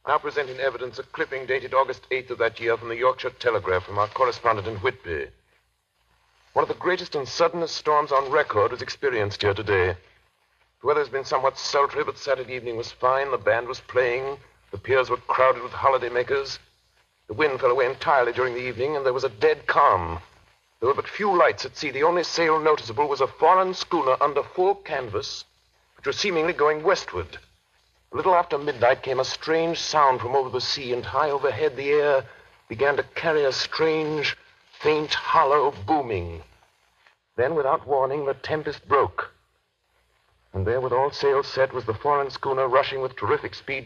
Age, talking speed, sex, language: 60-79, 185 wpm, male, English